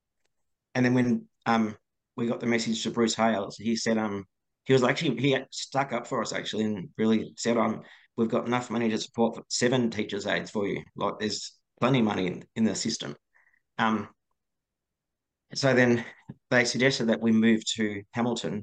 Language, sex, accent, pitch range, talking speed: English, male, Australian, 110-120 Hz, 190 wpm